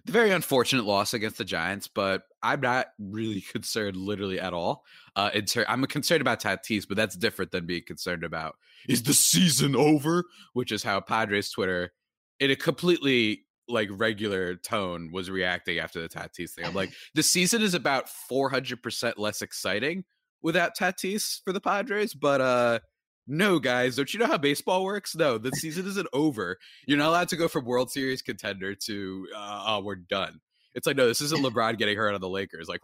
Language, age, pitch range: English, 20-39, 100-160 Hz